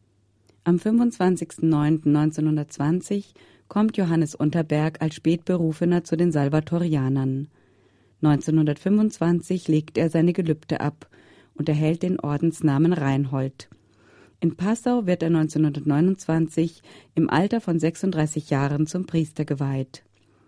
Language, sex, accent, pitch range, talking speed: German, female, German, 145-170 Hz, 100 wpm